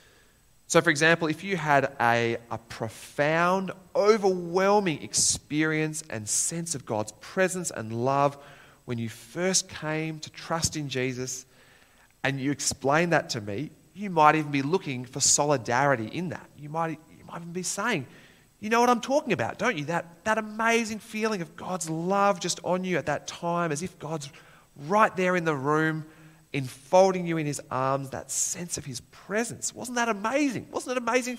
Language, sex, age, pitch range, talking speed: English, male, 30-49, 130-185 Hz, 180 wpm